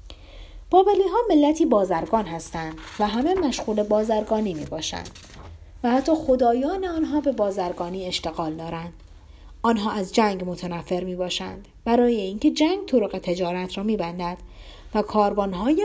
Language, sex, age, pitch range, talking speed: Persian, female, 30-49, 170-255 Hz, 135 wpm